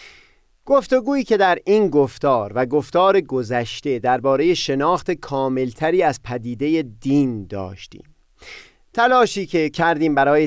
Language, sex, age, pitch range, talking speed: Persian, male, 30-49, 125-185 Hz, 110 wpm